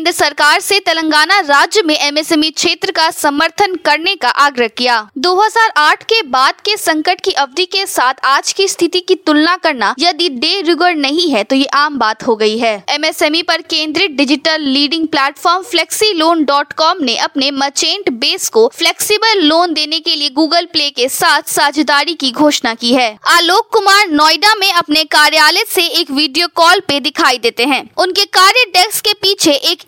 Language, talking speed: Hindi, 180 wpm